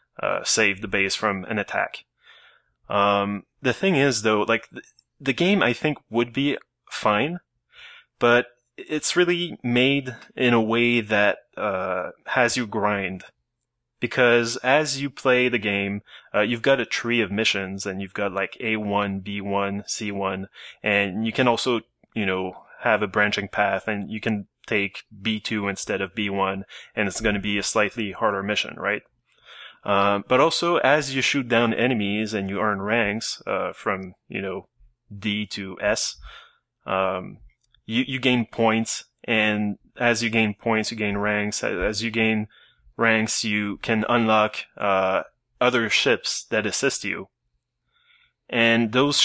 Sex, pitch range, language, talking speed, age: male, 100-120 Hz, English, 155 wpm, 20-39